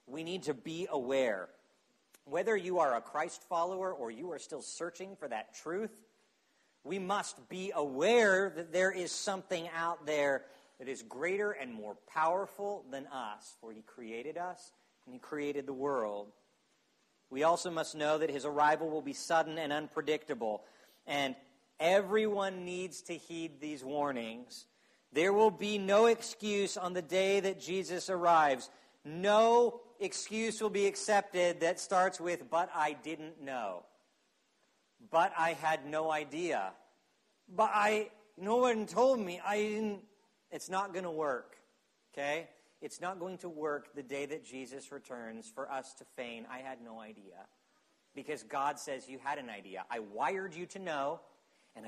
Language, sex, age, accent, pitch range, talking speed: English, male, 50-69, American, 140-195 Hz, 160 wpm